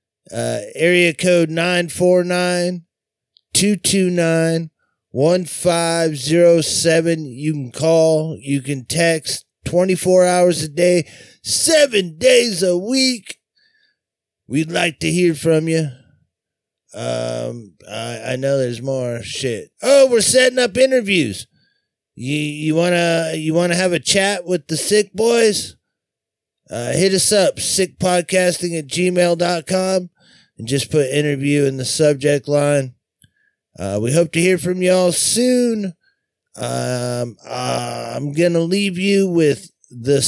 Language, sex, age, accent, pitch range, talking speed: English, male, 30-49, American, 140-190 Hz, 115 wpm